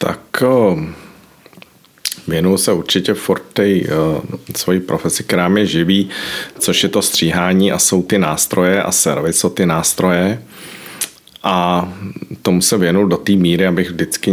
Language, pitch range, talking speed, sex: Czech, 90-100 Hz, 130 wpm, male